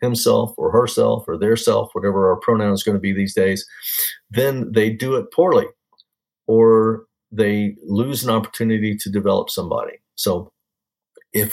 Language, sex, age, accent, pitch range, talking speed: English, male, 50-69, American, 100-115 Hz, 155 wpm